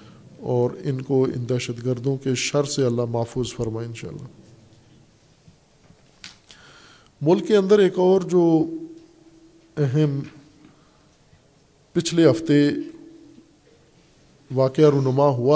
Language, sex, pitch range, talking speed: Urdu, male, 130-160 Hz, 95 wpm